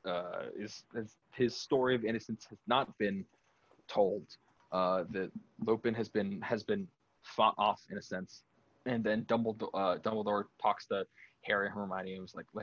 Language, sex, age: English, male, 20-39